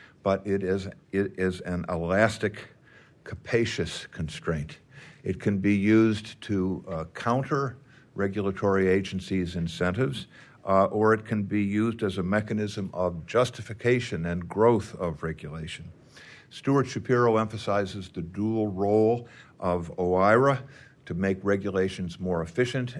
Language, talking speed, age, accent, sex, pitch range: English, 125 wpm, 50-69, American, male, 90-110 Hz